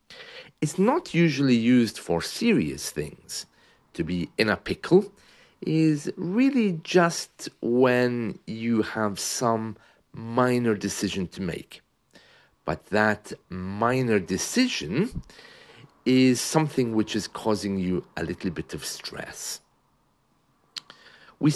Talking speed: 110 wpm